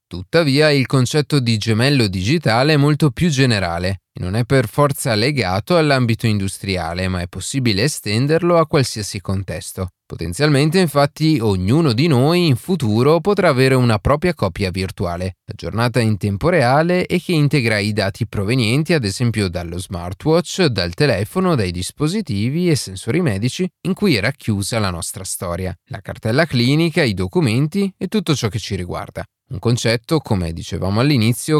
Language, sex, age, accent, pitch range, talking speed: Italian, male, 30-49, native, 100-145 Hz, 155 wpm